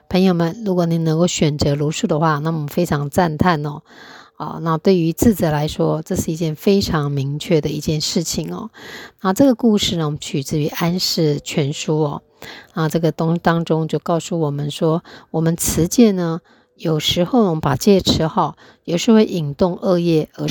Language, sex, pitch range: Chinese, female, 155-185 Hz